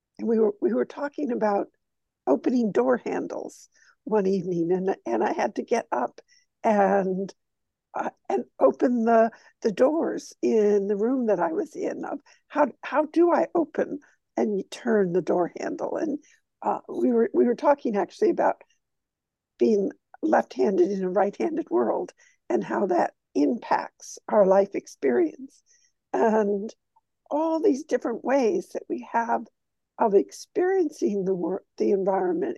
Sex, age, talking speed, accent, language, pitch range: female, 60-79, 145 wpm, American, English, 200-315 Hz